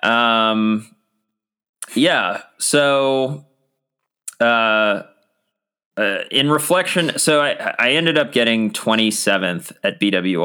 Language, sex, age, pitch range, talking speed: English, male, 20-39, 95-115 Hz, 105 wpm